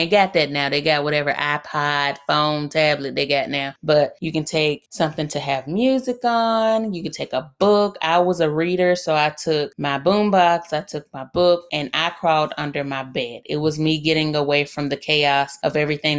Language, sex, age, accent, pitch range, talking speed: English, female, 30-49, American, 145-175 Hz, 210 wpm